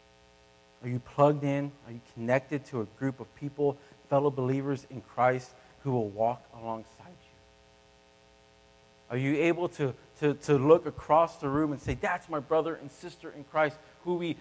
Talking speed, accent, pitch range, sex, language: 175 wpm, American, 140-205 Hz, male, English